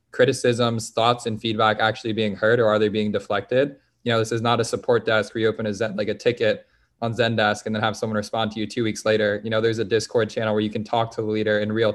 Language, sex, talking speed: English, male, 275 wpm